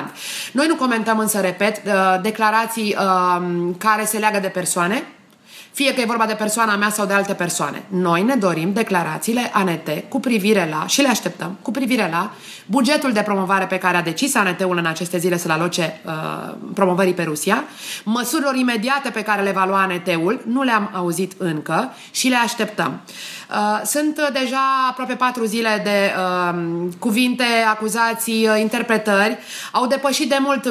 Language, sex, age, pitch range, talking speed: Romanian, female, 30-49, 200-255 Hz, 160 wpm